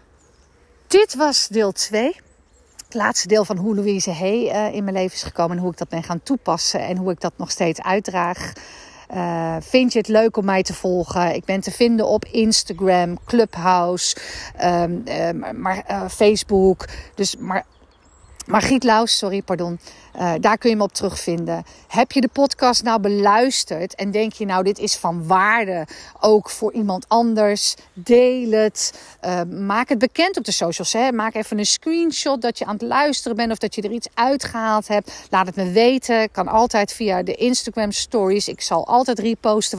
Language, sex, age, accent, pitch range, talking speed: Dutch, female, 50-69, Dutch, 180-230 Hz, 185 wpm